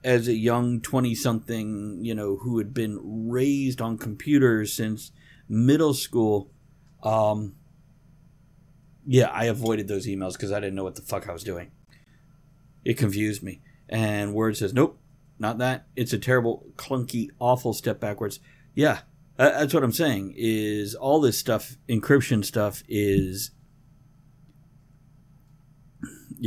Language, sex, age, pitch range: English, male, 50-69, 110-150 Hz